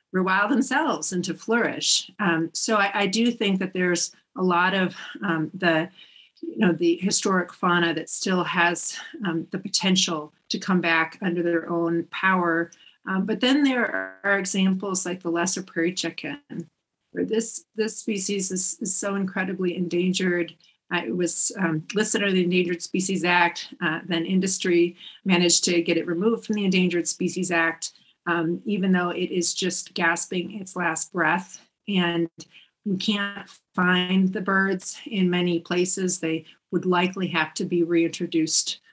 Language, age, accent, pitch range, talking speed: English, 40-59, American, 170-195 Hz, 160 wpm